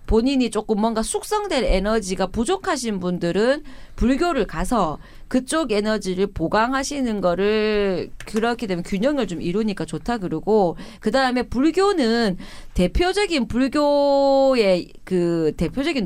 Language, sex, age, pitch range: Korean, female, 40-59, 180-270 Hz